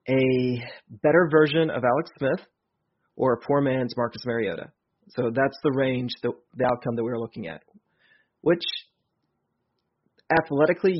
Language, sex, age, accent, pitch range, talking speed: English, male, 30-49, American, 125-150 Hz, 135 wpm